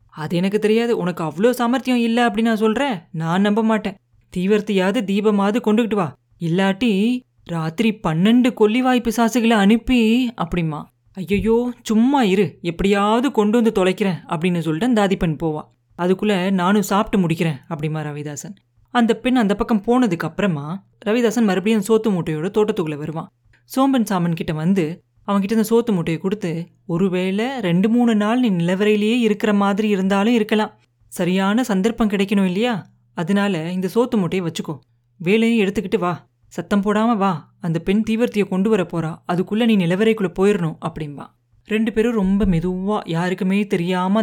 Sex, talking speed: female, 140 wpm